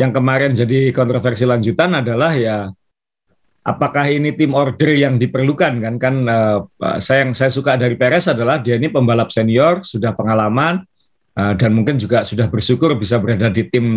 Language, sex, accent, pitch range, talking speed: Indonesian, male, native, 115-140 Hz, 170 wpm